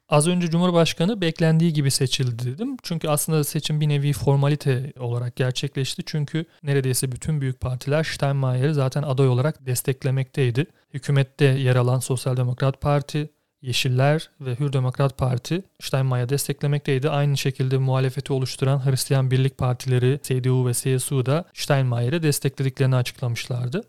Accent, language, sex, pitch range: native, Turkish, male, 130-150 Hz